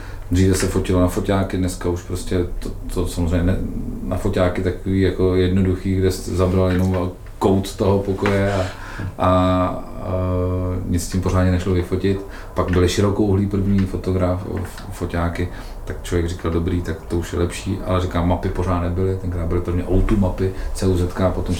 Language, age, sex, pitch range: Czech, 40-59, male, 90-110 Hz